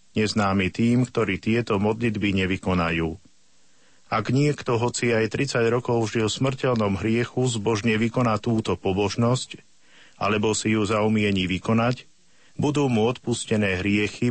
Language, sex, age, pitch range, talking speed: Slovak, male, 50-69, 100-120 Hz, 120 wpm